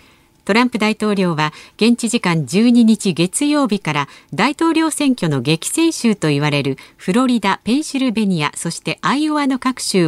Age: 50-69